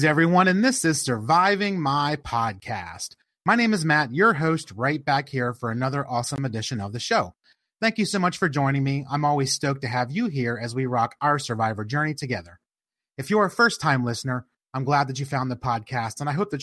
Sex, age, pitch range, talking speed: male, 30-49, 125-165 Hz, 220 wpm